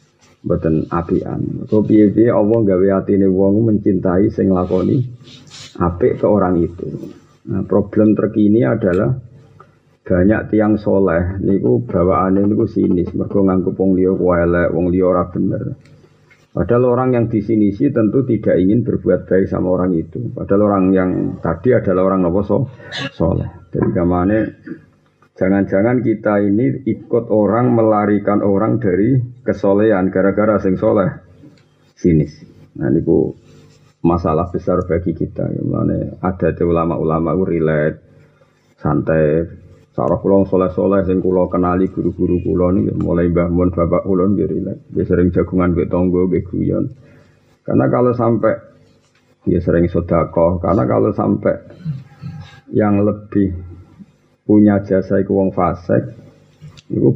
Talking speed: 120 wpm